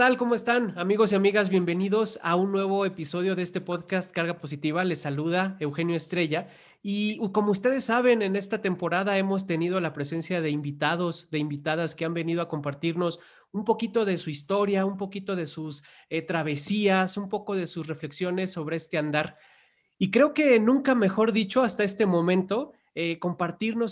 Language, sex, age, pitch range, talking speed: Spanish, male, 30-49, 160-200 Hz, 175 wpm